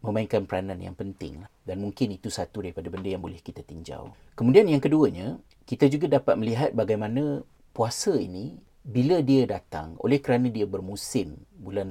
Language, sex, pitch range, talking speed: Malay, male, 95-125 Hz, 160 wpm